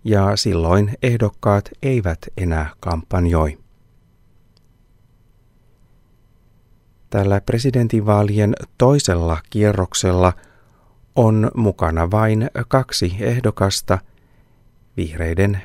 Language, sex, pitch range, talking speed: Finnish, male, 90-115 Hz, 60 wpm